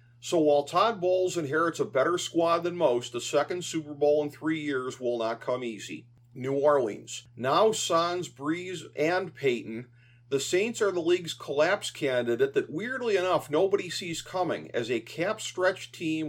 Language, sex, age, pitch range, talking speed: English, male, 50-69, 120-165 Hz, 165 wpm